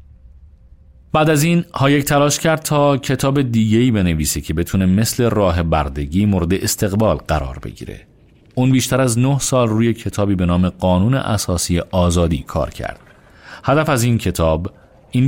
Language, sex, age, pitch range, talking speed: Persian, male, 40-59, 85-125 Hz, 150 wpm